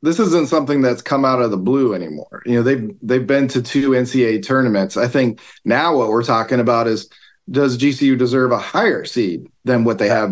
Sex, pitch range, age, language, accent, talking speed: male, 115-135 Hz, 40-59, English, American, 215 wpm